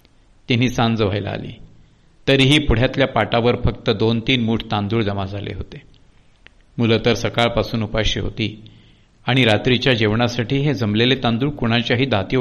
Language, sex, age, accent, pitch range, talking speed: Marathi, male, 50-69, native, 110-140 Hz, 105 wpm